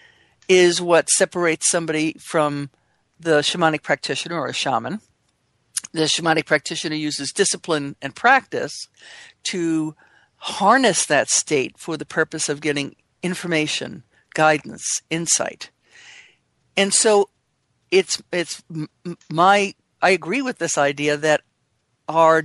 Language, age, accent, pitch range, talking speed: English, 50-69, American, 150-185 Hz, 110 wpm